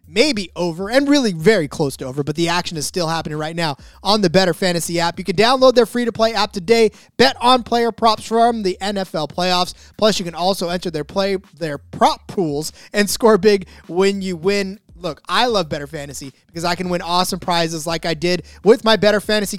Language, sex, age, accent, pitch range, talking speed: English, male, 20-39, American, 170-220 Hz, 210 wpm